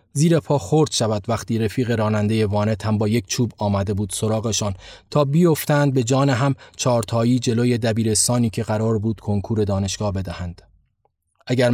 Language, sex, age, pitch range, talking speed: Persian, male, 30-49, 110-130 Hz, 155 wpm